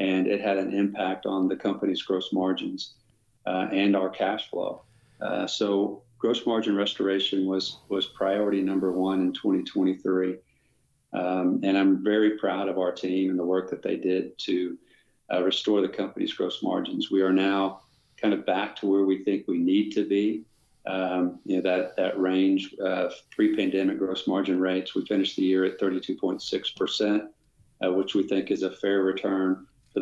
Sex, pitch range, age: male, 95-105 Hz, 50-69